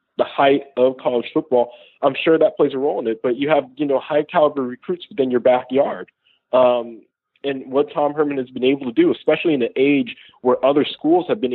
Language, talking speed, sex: English, 225 wpm, male